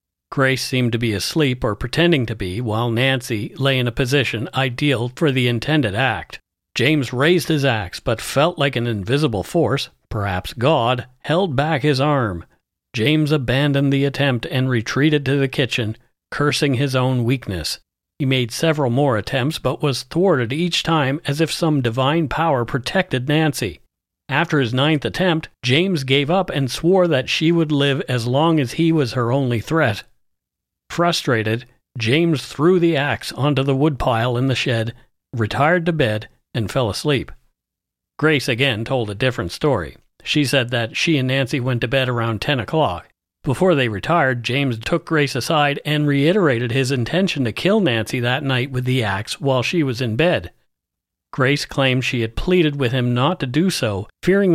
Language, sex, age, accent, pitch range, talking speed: English, male, 50-69, American, 120-150 Hz, 175 wpm